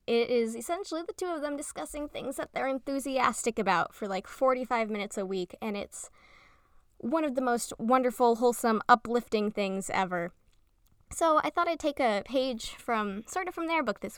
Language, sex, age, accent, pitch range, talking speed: English, female, 20-39, American, 195-245 Hz, 185 wpm